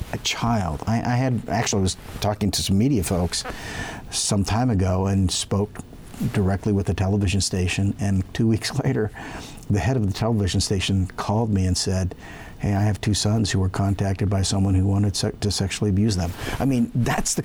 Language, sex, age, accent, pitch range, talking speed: English, male, 50-69, American, 95-120 Hz, 195 wpm